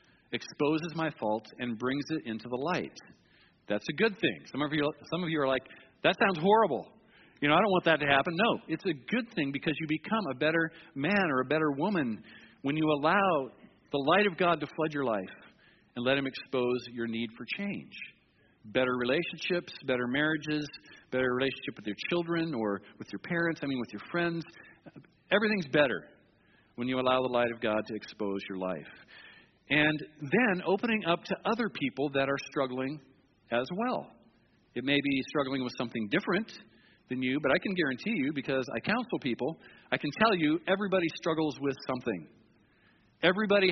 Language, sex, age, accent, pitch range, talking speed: English, male, 50-69, American, 130-175 Hz, 185 wpm